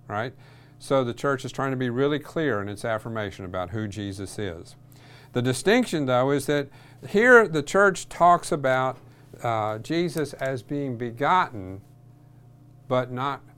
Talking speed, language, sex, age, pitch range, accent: 150 wpm, English, male, 50-69, 105-135 Hz, American